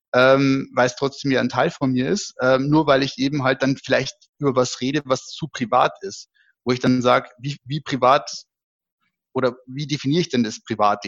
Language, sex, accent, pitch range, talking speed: German, male, German, 130-150 Hz, 210 wpm